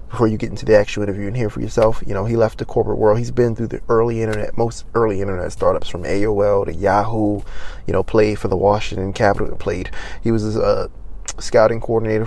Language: English